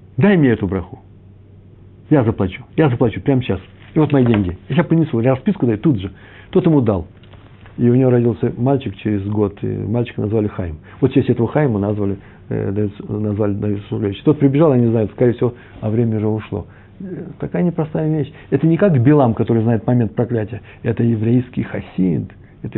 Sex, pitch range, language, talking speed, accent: male, 105-135 Hz, Russian, 185 wpm, native